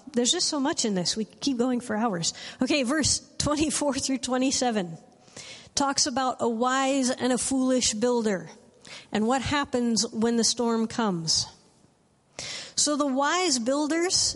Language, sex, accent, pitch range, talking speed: English, female, American, 220-270 Hz, 145 wpm